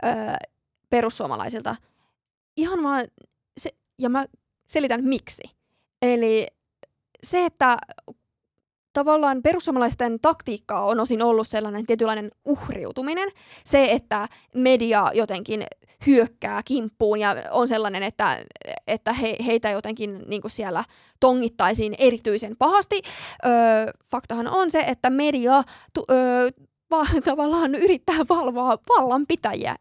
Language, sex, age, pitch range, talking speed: Finnish, female, 20-39, 220-275 Hz, 105 wpm